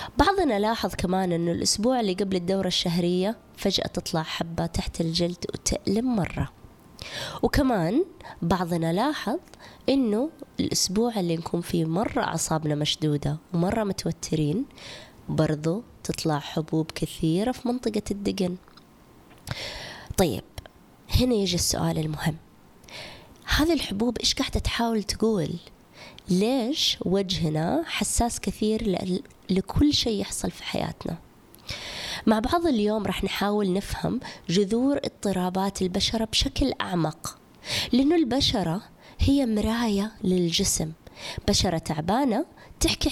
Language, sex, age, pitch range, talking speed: Arabic, female, 20-39, 170-225 Hz, 105 wpm